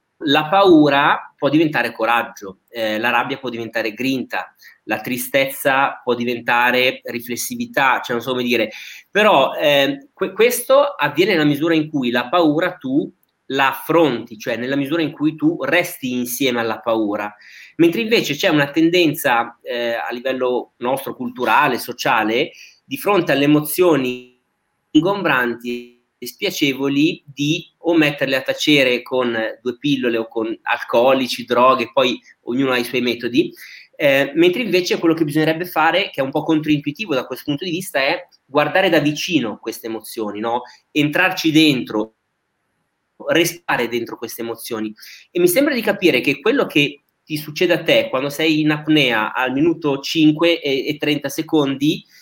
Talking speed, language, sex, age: 150 wpm, Italian, male, 30-49